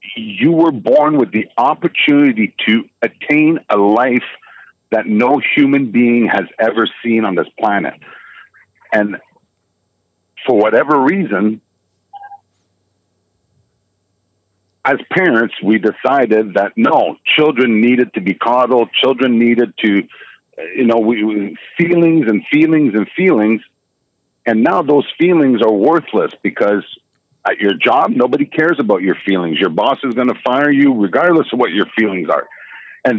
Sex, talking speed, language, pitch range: male, 135 wpm, English, 105-170 Hz